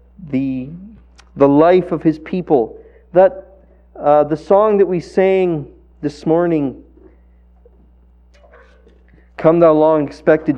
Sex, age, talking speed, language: male, 40-59, 110 wpm, English